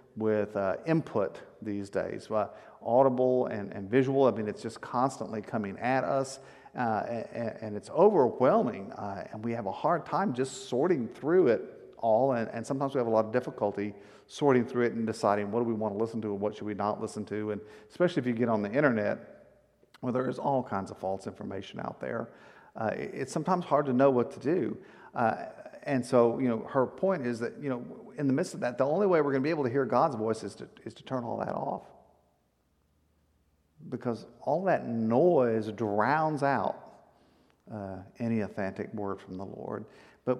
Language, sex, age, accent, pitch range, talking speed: English, male, 50-69, American, 105-135 Hz, 210 wpm